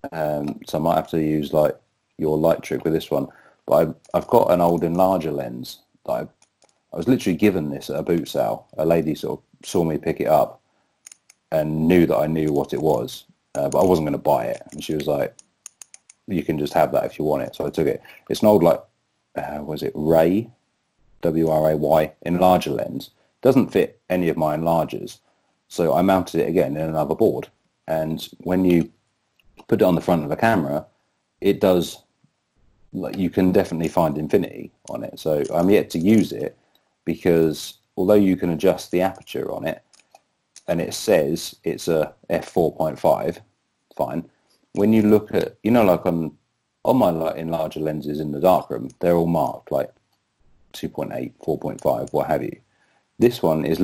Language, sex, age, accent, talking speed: English, male, 30-49, British, 195 wpm